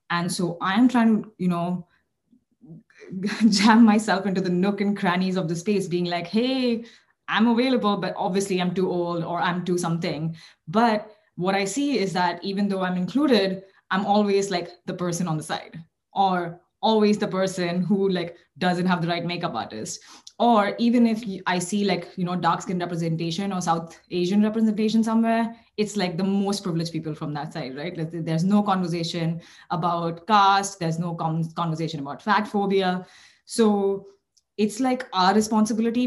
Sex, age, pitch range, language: female, 20-39, 175-210 Hz, English